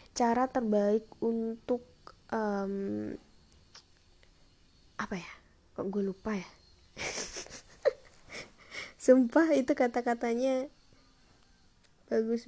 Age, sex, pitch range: 20-39, female, 185-225 Hz